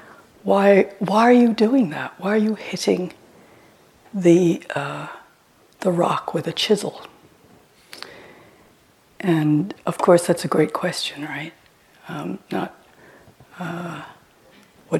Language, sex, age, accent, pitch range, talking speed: English, female, 60-79, American, 155-190 Hz, 115 wpm